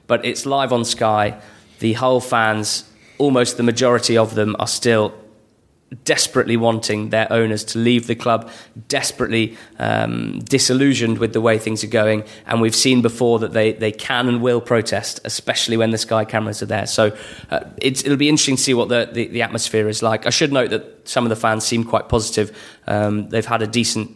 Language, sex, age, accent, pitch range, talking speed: English, male, 20-39, British, 110-120 Hz, 195 wpm